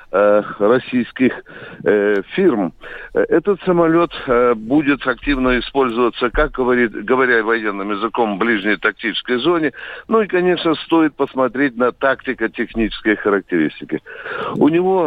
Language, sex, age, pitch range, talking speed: Russian, male, 60-79, 120-160 Hz, 105 wpm